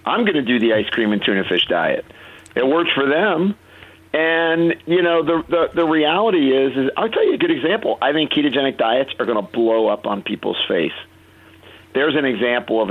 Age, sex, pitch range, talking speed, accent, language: 50-69, male, 115-140 Hz, 215 wpm, American, English